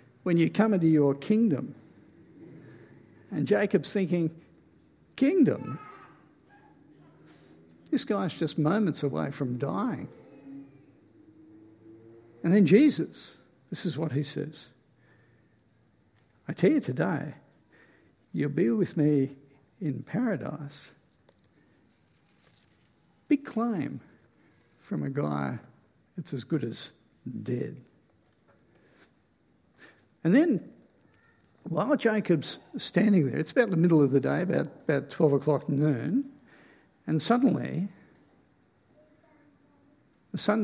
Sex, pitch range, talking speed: male, 140-205 Hz, 100 wpm